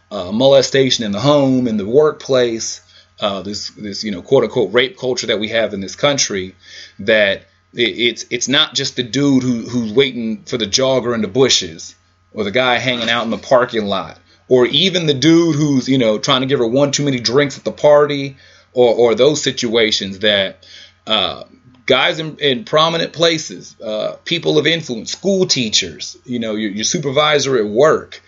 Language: English